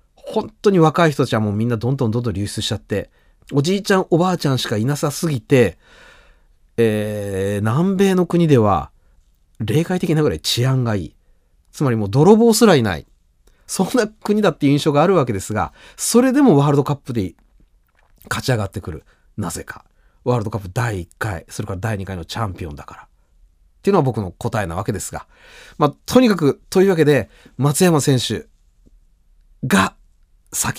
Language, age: Japanese, 30-49